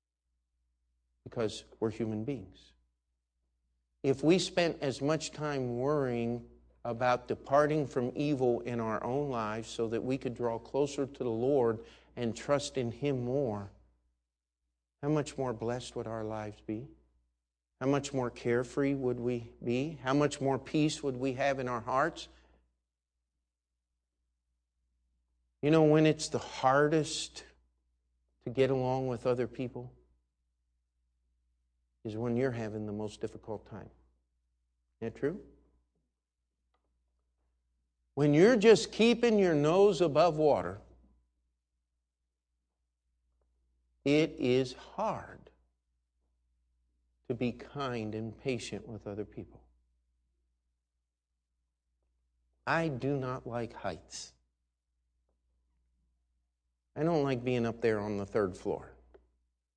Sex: male